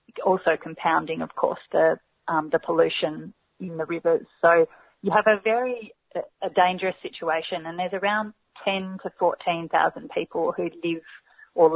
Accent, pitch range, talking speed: Australian, 165-190 Hz, 155 wpm